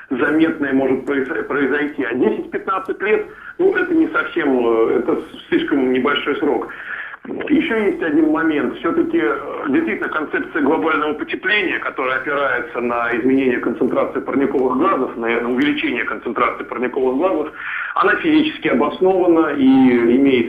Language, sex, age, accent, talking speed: Russian, male, 50-69, native, 115 wpm